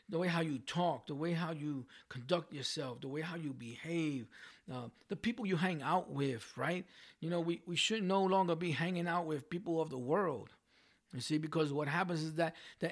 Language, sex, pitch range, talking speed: English, male, 150-185 Hz, 220 wpm